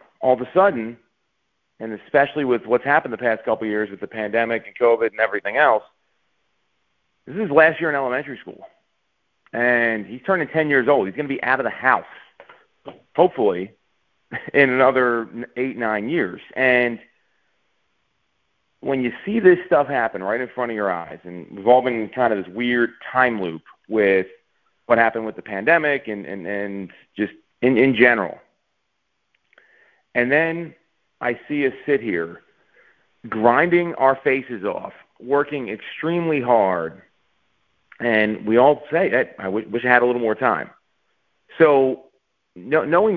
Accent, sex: American, male